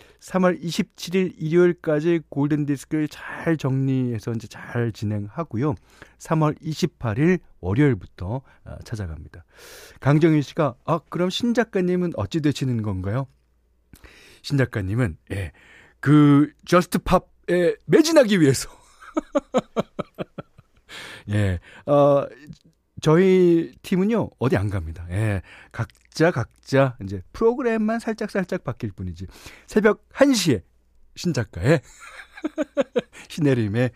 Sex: male